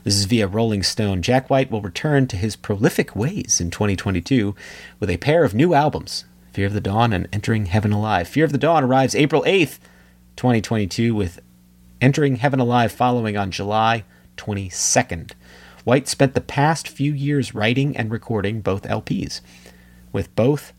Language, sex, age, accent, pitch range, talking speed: English, male, 30-49, American, 90-125 Hz, 165 wpm